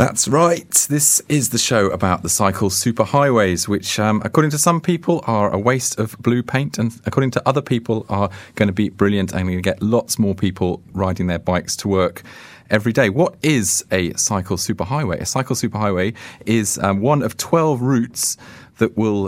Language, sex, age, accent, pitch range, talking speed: English, male, 40-59, British, 100-125 Hz, 195 wpm